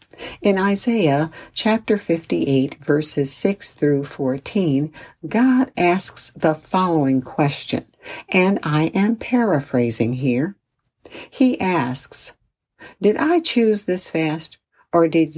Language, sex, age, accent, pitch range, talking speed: English, female, 60-79, American, 140-200 Hz, 105 wpm